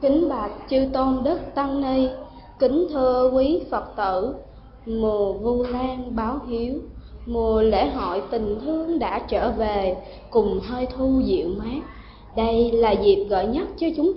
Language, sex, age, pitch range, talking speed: Vietnamese, female, 20-39, 205-275 Hz, 155 wpm